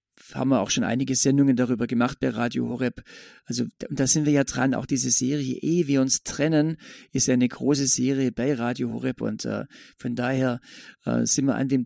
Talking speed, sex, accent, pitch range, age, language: 200 wpm, male, German, 125-145 Hz, 40-59, German